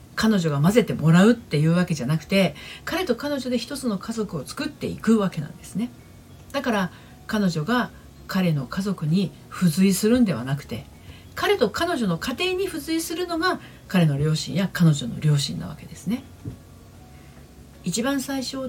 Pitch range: 155-240 Hz